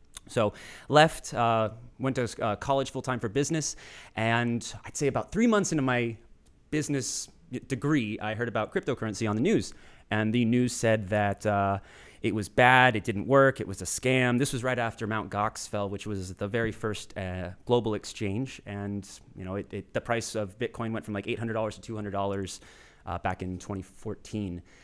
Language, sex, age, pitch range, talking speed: English, male, 30-49, 105-135 Hz, 185 wpm